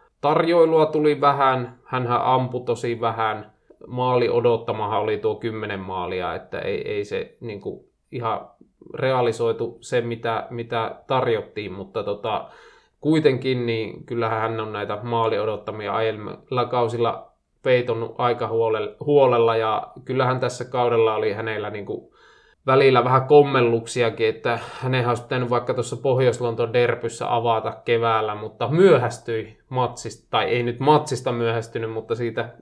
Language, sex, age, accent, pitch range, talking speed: Finnish, male, 20-39, native, 115-140 Hz, 125 wpm